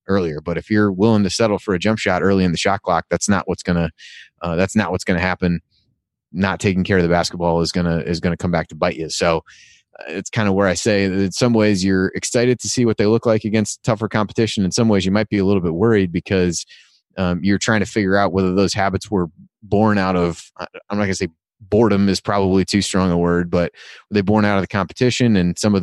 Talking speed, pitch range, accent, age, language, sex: 265 wpm, 85-105 Hz, American, 30-49, English, male